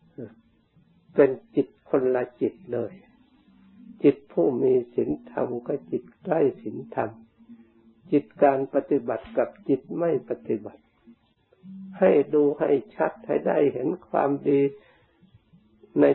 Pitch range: 115-180 Hz